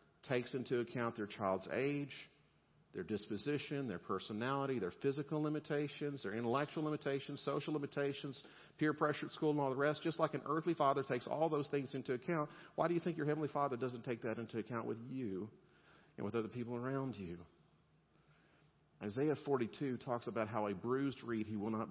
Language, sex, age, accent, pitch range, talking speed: English, male, 50-69, American, 110-140 Hz, 185 wpm